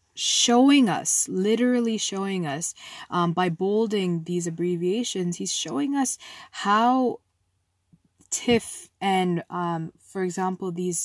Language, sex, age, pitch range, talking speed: English, female, 20-39, 165-200 Hz, 110 wpm